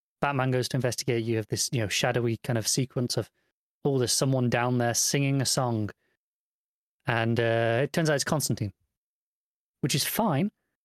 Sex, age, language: male, 30-49, English